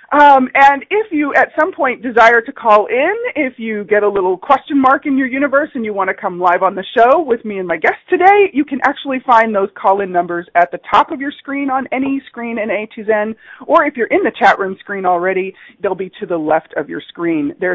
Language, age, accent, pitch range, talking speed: English, 40-59, American, 185-270 Hz, 250 wpm